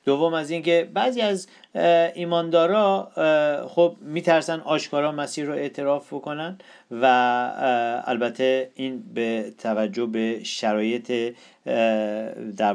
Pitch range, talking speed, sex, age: 130-180 Hz, 105 wpm, male, 50-69